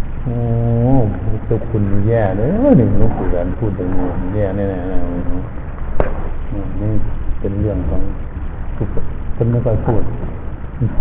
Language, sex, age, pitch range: Thai, male, 60-79, 100-115 Hz